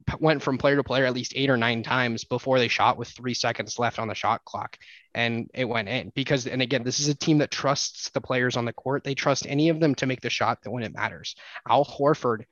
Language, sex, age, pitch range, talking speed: English, male, 20-39, 120-140 Hz, 265 wpm